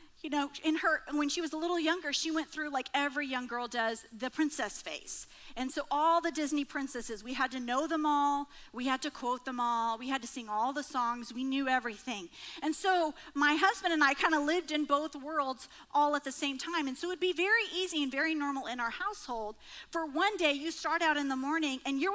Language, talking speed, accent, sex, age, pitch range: English, 240 wpm, American, female, 40-59, 270-335 Hz